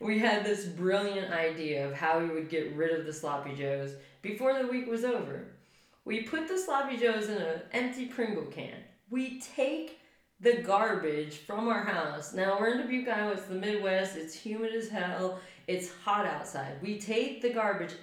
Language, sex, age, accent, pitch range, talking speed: English, female, 20-39, American, 175-235 Hz, 185 wpm